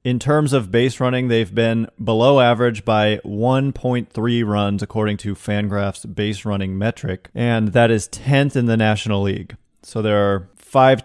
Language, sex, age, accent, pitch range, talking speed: English, male, 30-49, American, 100-120 Hz, 165 wpm